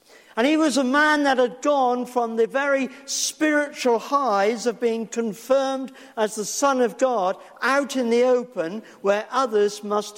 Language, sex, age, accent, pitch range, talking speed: English, male, 50-69, British, 185-255 Hz, 165 wpm